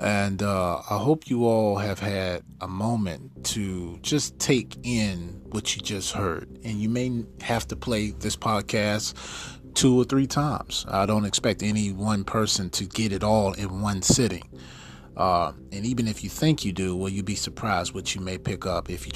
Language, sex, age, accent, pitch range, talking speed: English, male, 30-49, American, 95-125 Hz, 195 wpm